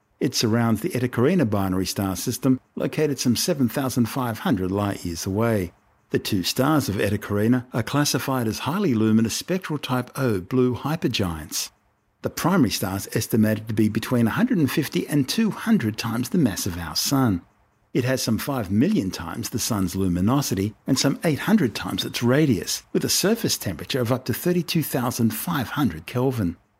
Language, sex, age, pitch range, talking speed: English, male, 50-69, 100-125 Hz, 150 wpm